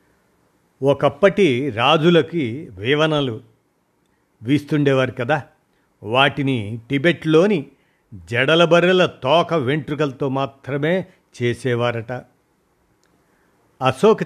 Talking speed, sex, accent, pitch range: 55 wpm, male, native, 120-160 Hz